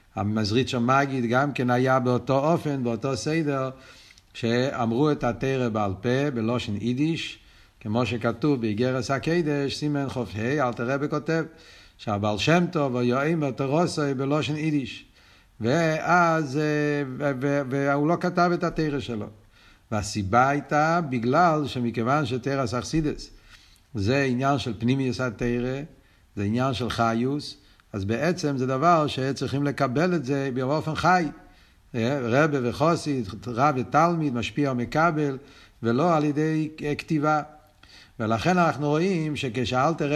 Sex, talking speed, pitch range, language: male, 125 wpm, 120-150 Hz, Hebrew